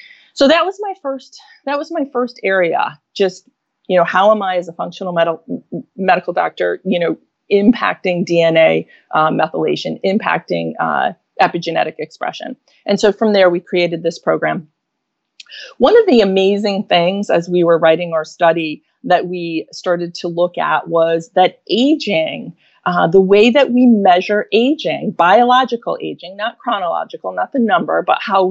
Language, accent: English, American